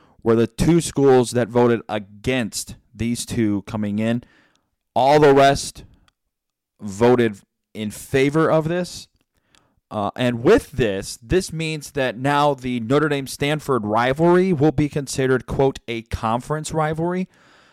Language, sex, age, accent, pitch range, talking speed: English, male, 20-39, American, 110-150 Hz, 130 wpm